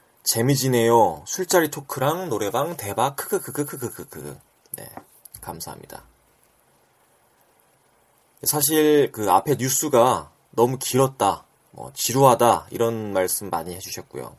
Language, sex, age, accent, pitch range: Korean, male, 20-39, native, 90-140 Hz